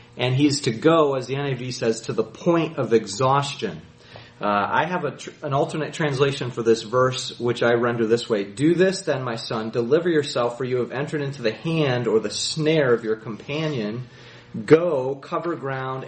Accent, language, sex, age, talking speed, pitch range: American, English, male, 30-49, 185 wpm, 115-150 Hz